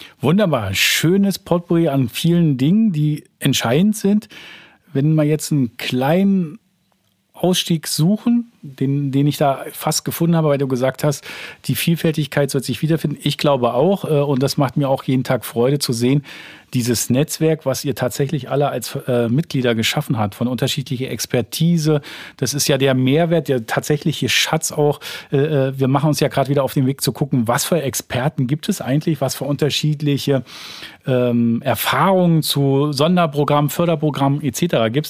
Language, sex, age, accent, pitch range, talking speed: German, male, 40-59, German, 130-160 Hz, 165 wpm